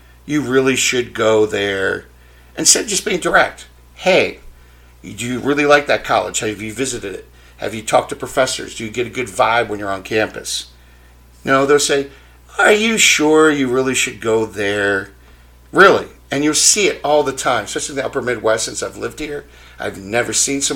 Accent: American